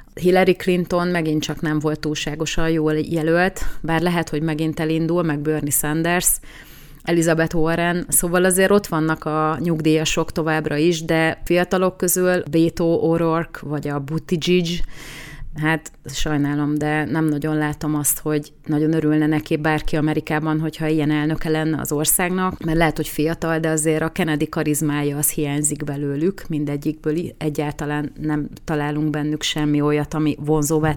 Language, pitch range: Hungarian, 150-170 Hz